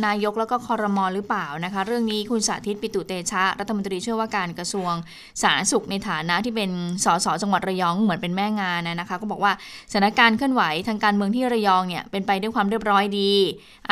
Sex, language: female, Thai